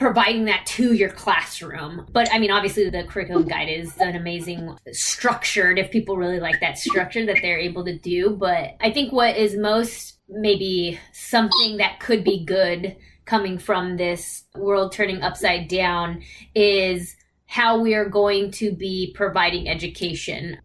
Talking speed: 160 wpm